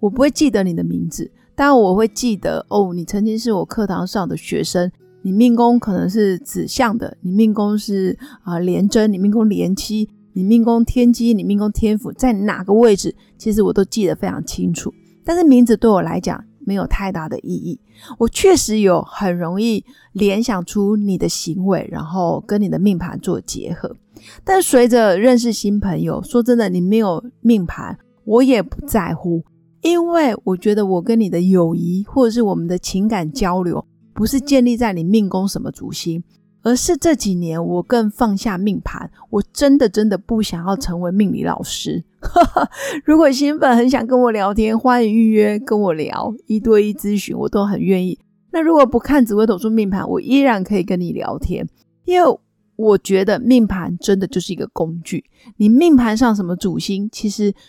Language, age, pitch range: Chinese, 30-49, 190-235 Hz